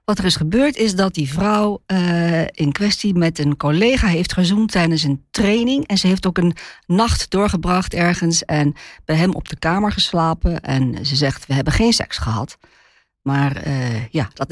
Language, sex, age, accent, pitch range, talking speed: Dutch, female, 50-69, Dutch, 135-175 Hz, 190 wpm